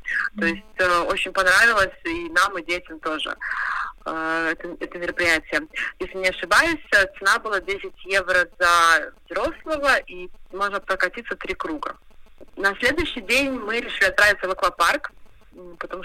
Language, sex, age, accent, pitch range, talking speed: Russian, female, 30-49, native, 185-230 Hz, 140 wpm